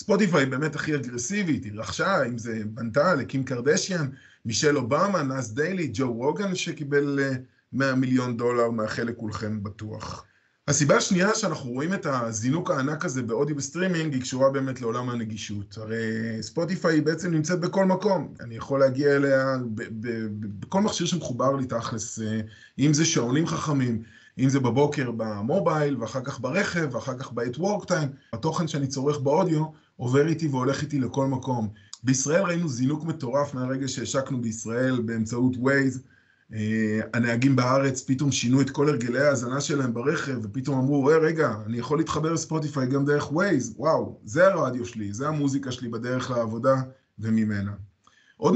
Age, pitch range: 20-39, 115-150 Hz